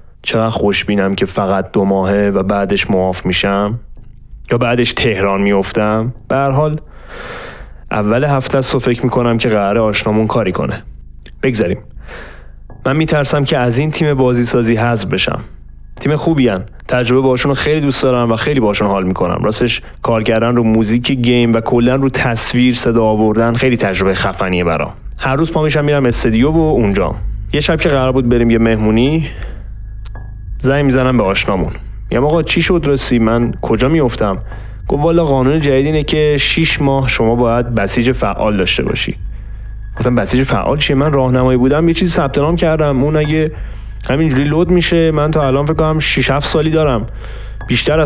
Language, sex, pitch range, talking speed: Persian, male, 105-140 Hz, 165 wpm